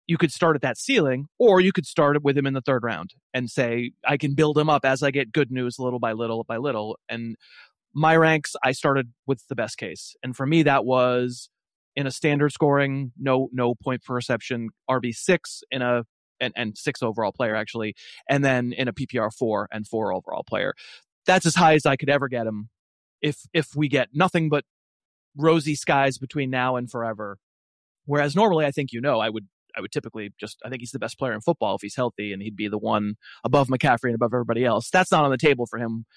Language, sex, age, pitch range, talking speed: English, male, 30-49, 120-150 Hz, 230 wpm